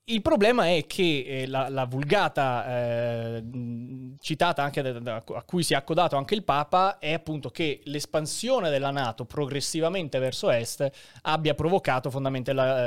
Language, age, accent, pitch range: Italian, 20-39, native, 130-175 Hz